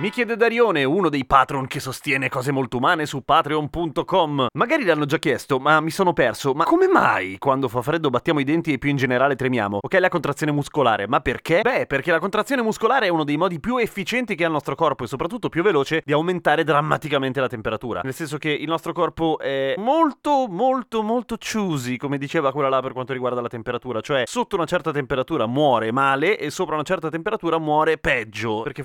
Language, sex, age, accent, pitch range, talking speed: Italian, male, 30-49, native, 125-165 Hz, 210 wpm